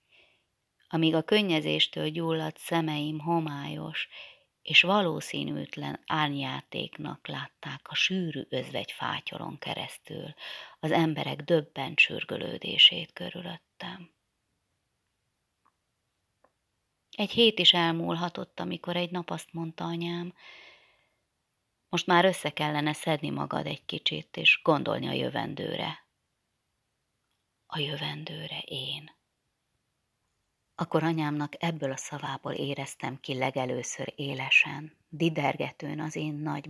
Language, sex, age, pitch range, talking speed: Hungarian, female, 30-49, 145-175 Hz, 95 wpm